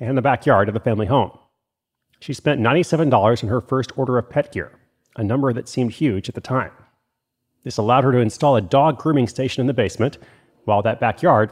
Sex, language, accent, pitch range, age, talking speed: male, English, American, 115-150 Hz, 30-49, 210 wpm